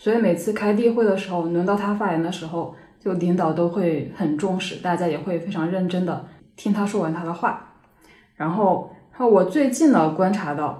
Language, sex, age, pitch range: Chinese, female, 10-29, 170-225 Hz